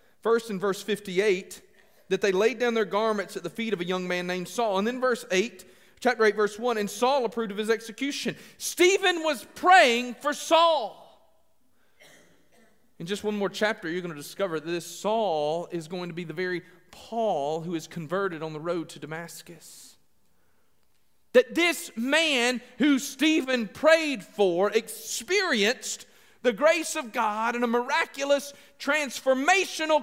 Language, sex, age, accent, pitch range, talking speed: English, male, 40-59, American, 205-280 Hz, 160 wpm